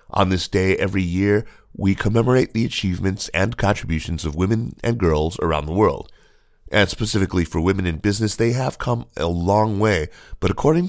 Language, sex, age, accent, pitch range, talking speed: English, male, 30-49, American, 85-105 Hz, 175 wpm